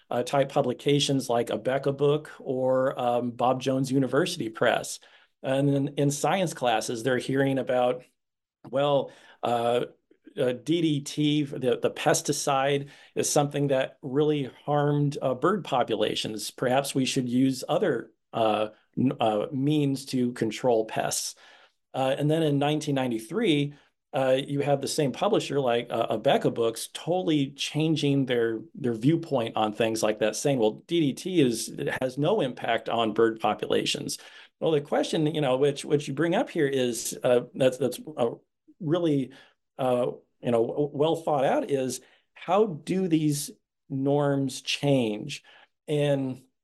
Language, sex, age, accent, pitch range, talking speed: English, male, 40-59, American, 125-150 Hz, 145 wpm